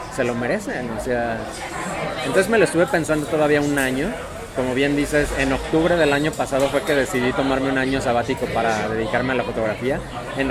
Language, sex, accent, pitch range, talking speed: Spanish, male, Mexican, 125-145 Hz, 195 wpm